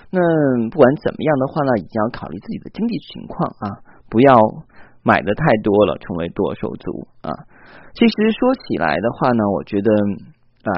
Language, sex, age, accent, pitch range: Chinese, male, 20-39, native, 105-170 Hz